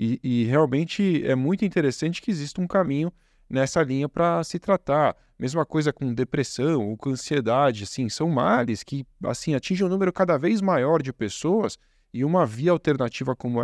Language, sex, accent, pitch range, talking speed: Portuguese, male, Brazilian, 125-170 Hz, 175 wpm